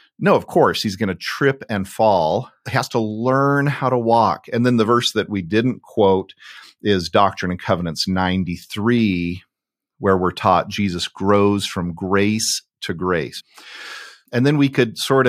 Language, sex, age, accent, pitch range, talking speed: English, male, 40-59, American, 100-130 Hz, 170 wpm